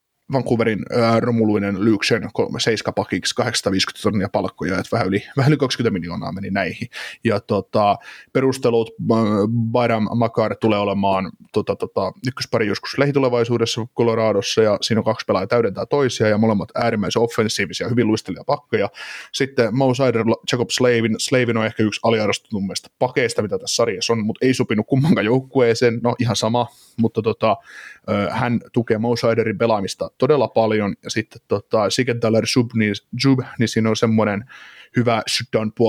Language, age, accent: Finnish, 20-39, native